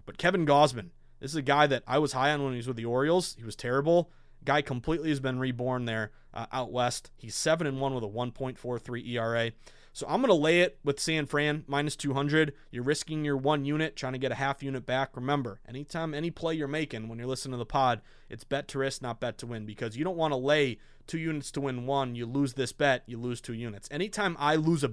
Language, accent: English, American